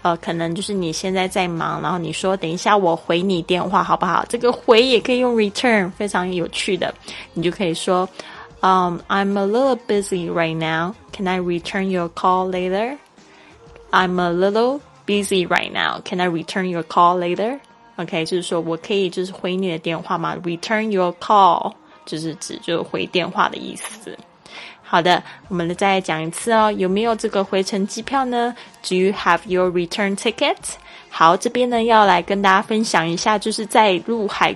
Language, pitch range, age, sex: Chinese, 175-210 Hz, 20-39, female